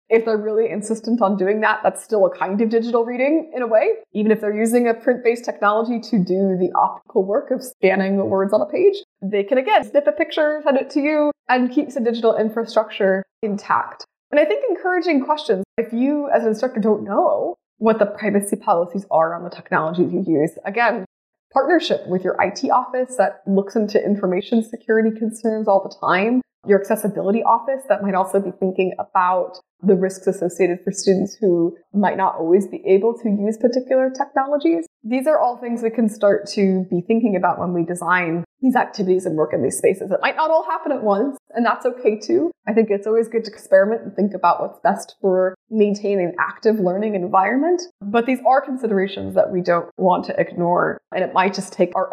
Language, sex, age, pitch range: English, female, 20-39, 190-245 Hz